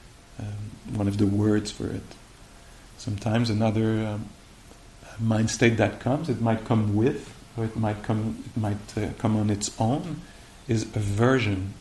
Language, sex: English, male